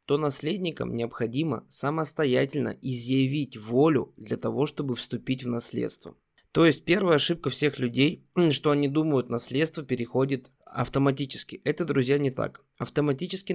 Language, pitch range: Russian, 125-150 Hz